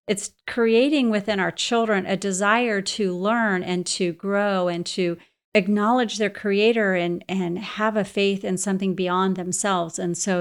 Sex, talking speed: female, 160 wpm